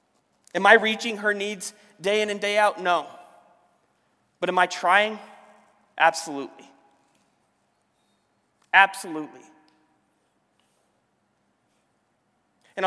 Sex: male